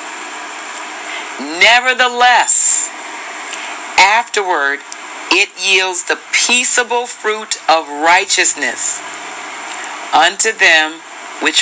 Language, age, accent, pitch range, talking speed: English, 40-59, American, 160-215 Hz, 60 wpm